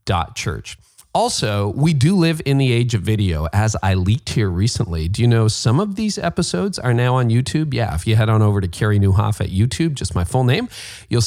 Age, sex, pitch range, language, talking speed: 40-59, male, 105-140 Hz, English, 225 wpm